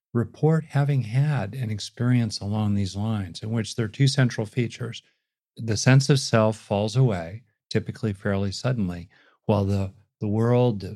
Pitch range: 105-130 Hz